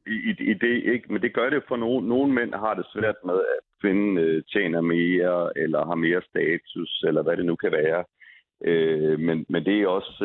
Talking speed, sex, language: 220 wpm, male, Danish